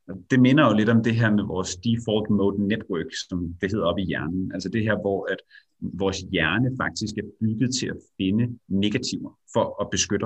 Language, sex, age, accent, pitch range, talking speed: Danish, male, 30-49, native, 95-125 Hz, 205 wpm